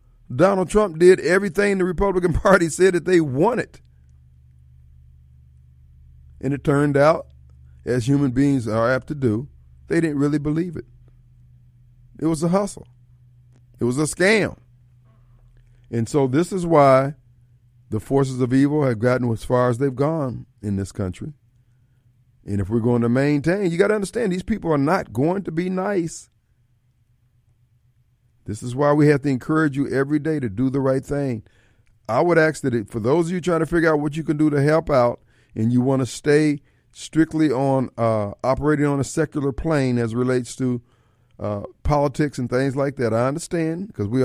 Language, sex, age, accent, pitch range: Japanese, male, 50-69, American, 115-150 Hz